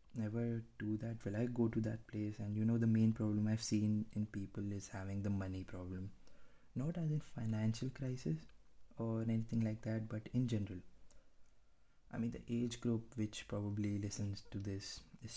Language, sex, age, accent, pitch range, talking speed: English, male, 20-39, Indian, 95-110 Hz, 185 wpm